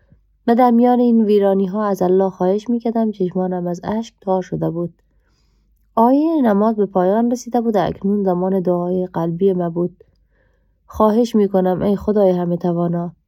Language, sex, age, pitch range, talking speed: Persian, female, 20-39, 175-210 Hz, 150 wpm